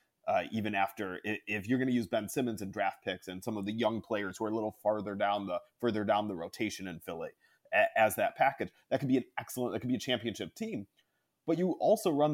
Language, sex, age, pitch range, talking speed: English, male, 30-49, 110-150 Hz, 250 wpm